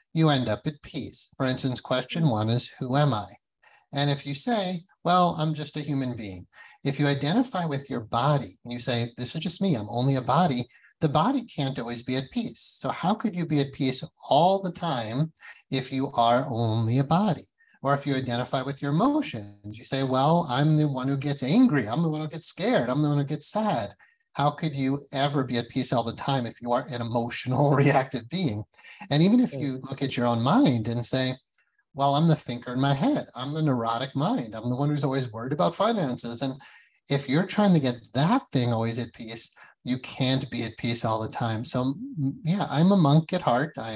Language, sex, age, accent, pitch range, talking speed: English, male, 30-49, American, 120-155 Hz, 225 wpm